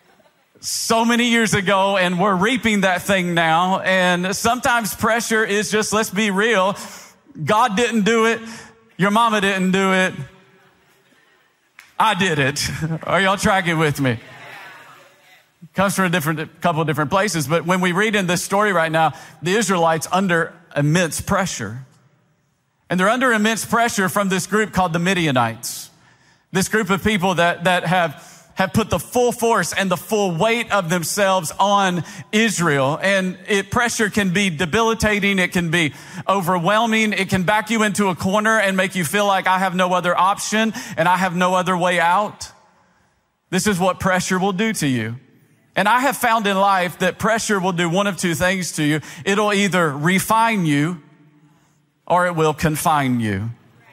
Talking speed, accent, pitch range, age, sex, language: 170 wpm, American, 160-205 Hz, 40-59, male, English